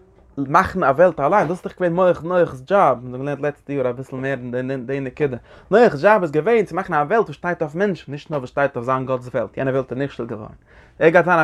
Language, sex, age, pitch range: English, male, 20-39, 135-210 Hz